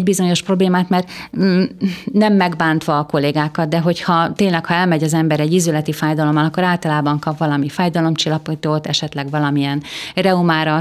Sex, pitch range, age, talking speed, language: female, 155-190 Hz, 30-49, 145 wpm, Hungarian